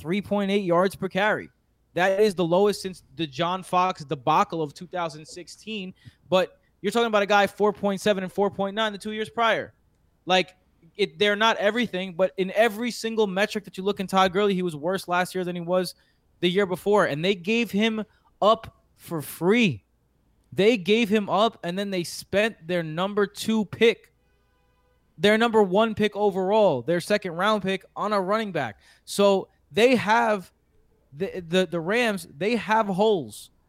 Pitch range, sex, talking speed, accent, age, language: 175-210 Hz, male, 170 wpm, American, 20-39, English